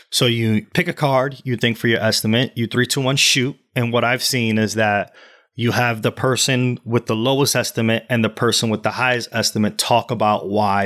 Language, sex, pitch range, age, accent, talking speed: English, male, 110-140 Hz, 30-49, American, 215 wpm